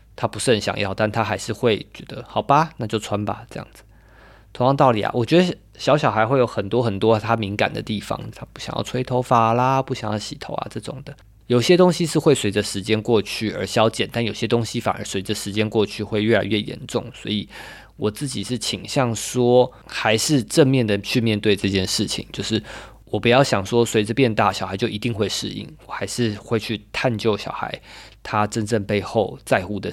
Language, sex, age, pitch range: Chinese, male, 20-39, 100-125 Hz